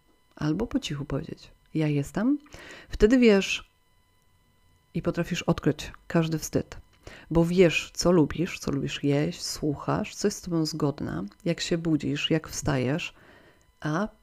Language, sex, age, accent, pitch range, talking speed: Polish, female, 40-59, native, 150-180 Hz, 135 wpm